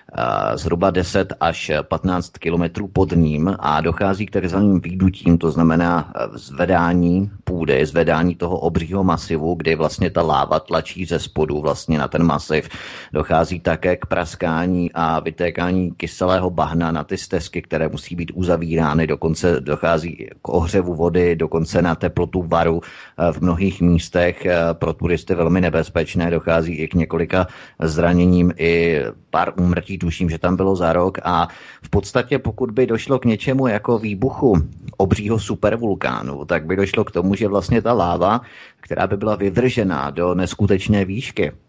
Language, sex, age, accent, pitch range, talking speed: Czech, male, 30-49, native, 85-100 Hz, 150 wpm